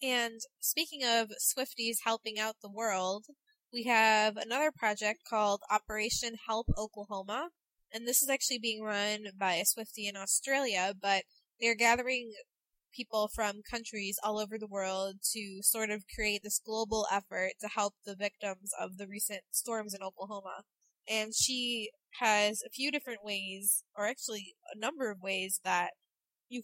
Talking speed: 155 wpm